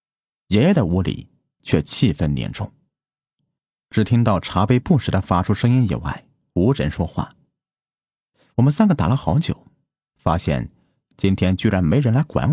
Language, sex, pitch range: Chinese, male, 90-135 Hz